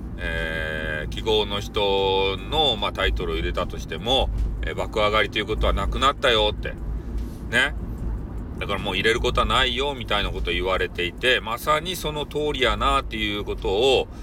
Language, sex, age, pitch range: Japanese, male, 40-59, 90-135 Hz